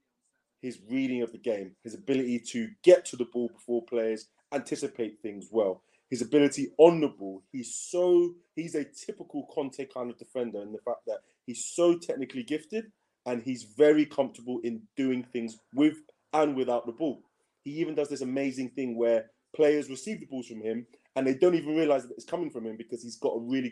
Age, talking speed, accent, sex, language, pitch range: 30-49, 195 wpm, British, male, English, 120-165 Hz